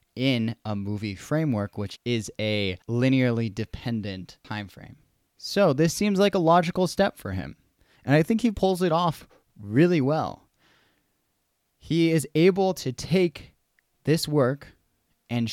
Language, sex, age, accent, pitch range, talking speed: English, male, 20-39, American, 105-140 Hz, 145 wpm